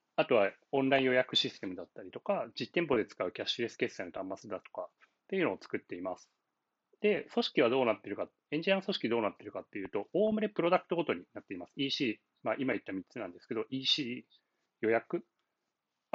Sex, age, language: male, 30-49, Japanese